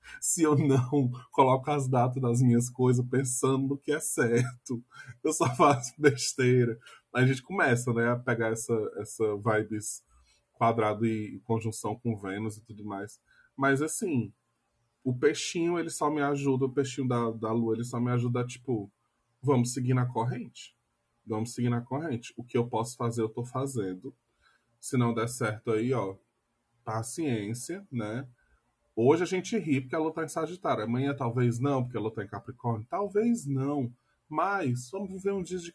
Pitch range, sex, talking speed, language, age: 110-135 Hz, male, 175 wpm, Portuguese, 20-39